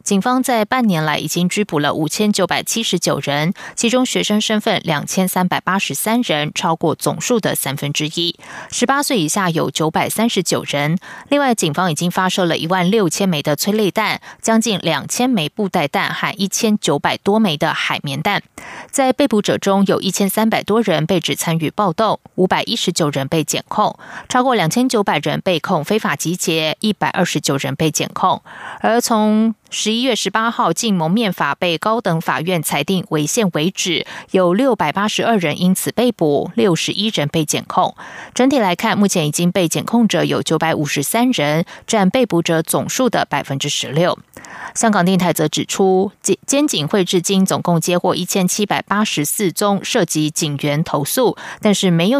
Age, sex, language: 20-39, female, German